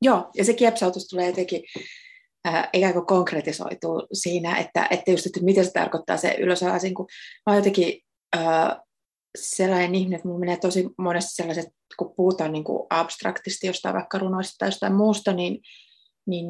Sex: female